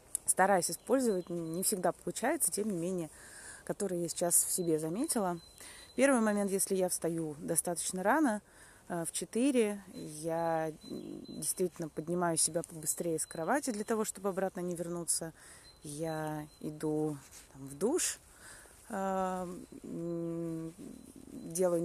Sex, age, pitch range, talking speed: female, 20-39, 165-200 Hz, 115 wpm